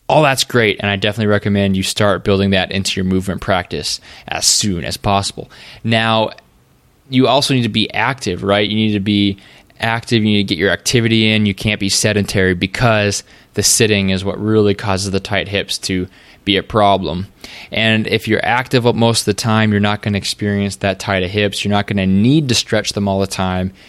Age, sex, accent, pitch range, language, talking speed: 20-39, male, American, 95-115 Hz, English, 215 wpm